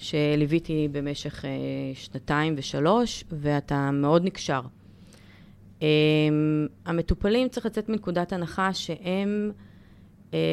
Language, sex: Hebrew, female